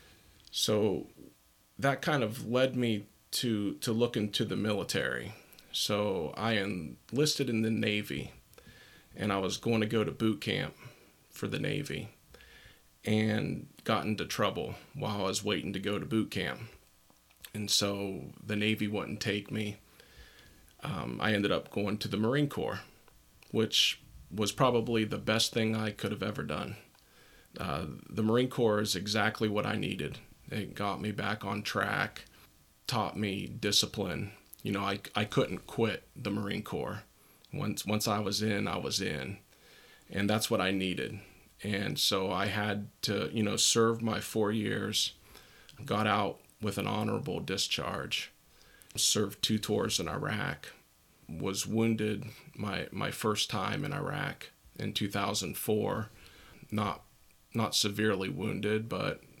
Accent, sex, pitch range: American, male, 100-110 Hz